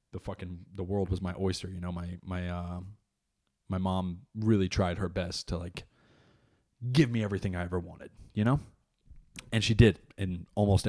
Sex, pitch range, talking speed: male, 90-110 Hz, 180 wpm